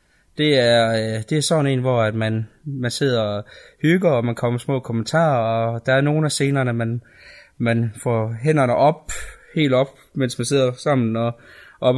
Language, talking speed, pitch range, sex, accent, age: Danish, 185 wpm, 120-150 Hz, male, native, 20-39